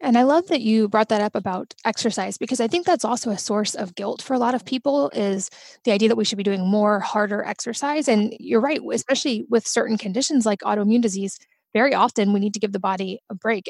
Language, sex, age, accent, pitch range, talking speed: English, female, 20-39, American, 200-235 Hz, 240 wpm